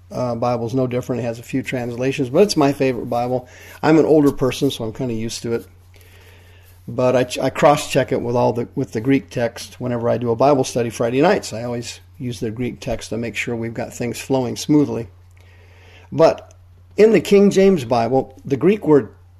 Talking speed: 215 wpm